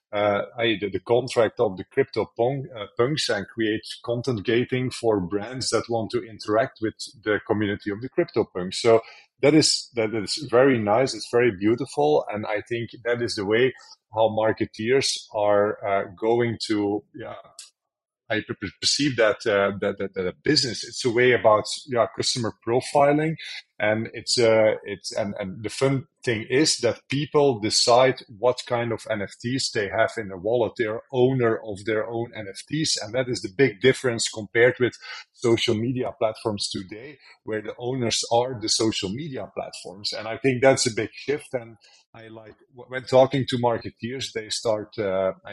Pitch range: 110-130 Hz